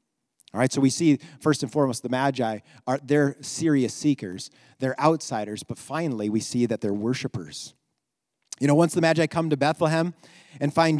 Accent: American